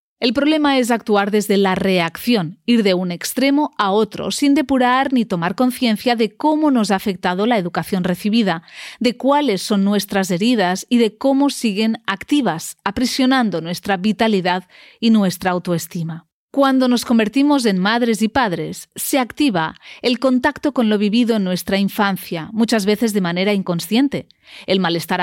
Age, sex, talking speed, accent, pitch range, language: 30-49, female, 155 wpm, Spanish, 190-260 Hz, Spanish